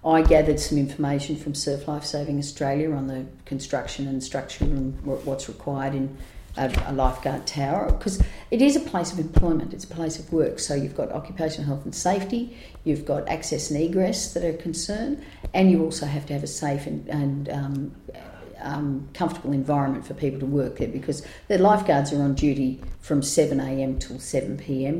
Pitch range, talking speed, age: 135-160 Hz, 185 wpm, 50-69